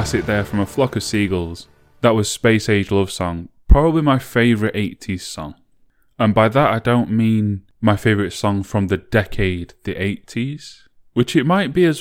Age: 10-29